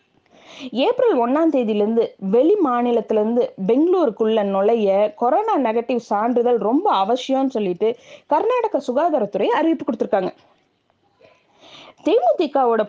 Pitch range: 225-305 Hz